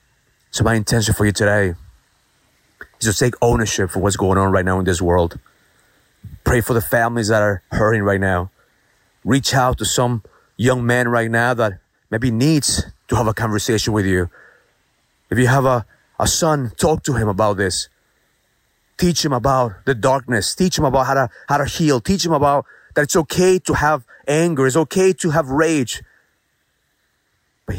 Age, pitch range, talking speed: 30-49, 100-130 Hz, 180 wpm